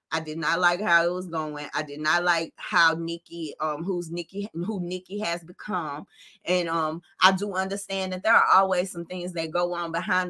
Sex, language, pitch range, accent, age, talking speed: female, English, 165-205 Hz, American, 20-39, 210 wpm